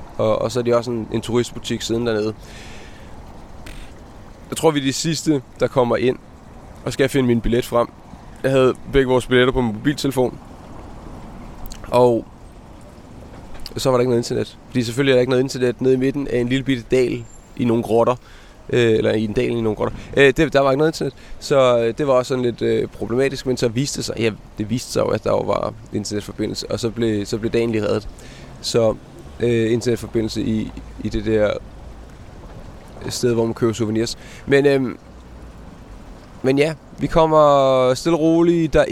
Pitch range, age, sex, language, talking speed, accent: 115-145 Hz, 20-39, male, Danish, 195 wpm, native